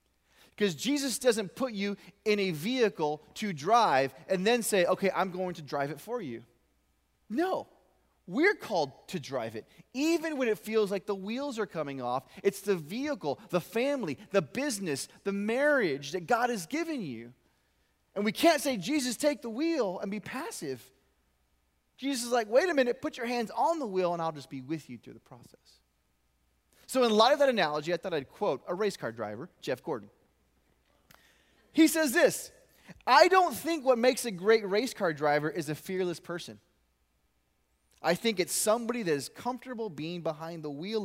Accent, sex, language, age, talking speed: American, male, English, 20-39, 185 wpm